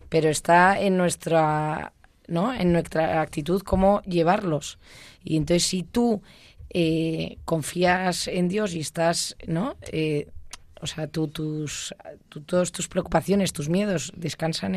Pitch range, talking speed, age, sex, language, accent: 160-185 Hz, 135 wpm, 20-39, female, Spanish, Spanish